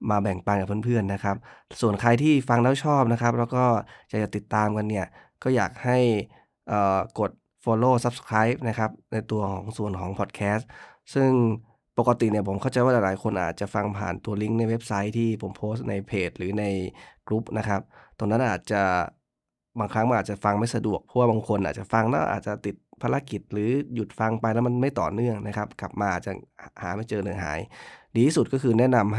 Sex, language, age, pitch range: male, Thai, 20-39, 100-120 Hz